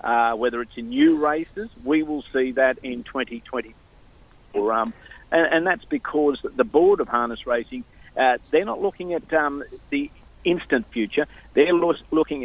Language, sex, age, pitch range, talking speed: English, male, 50-69, 125-165 Hz, 165 wpm